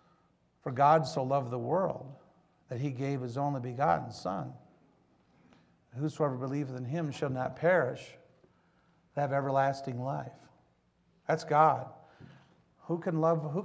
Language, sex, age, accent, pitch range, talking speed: English, male, 50-69, American, 135-160 Hz, 130 wpm